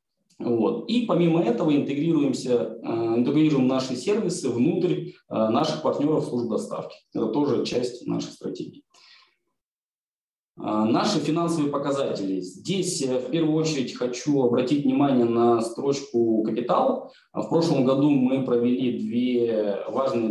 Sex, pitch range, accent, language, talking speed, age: male, 110-145 Hz, native, Russian, 120 wpm, 20-39